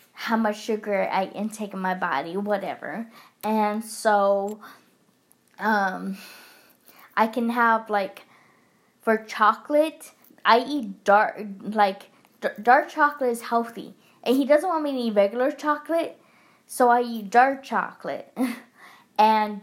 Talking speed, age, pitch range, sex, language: 125 wpm, 10-29, 205-245 Hz, female, English